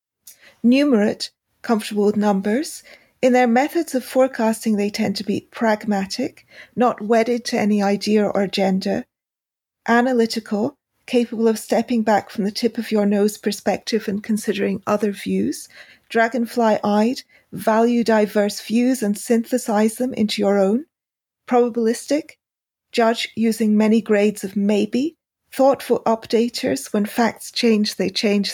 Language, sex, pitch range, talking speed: English, female, 210-245 Hz, 130 wpm